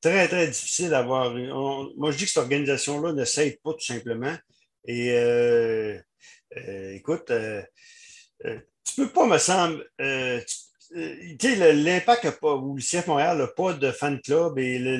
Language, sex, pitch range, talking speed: French, male, 130-175 Hz, 190 wpm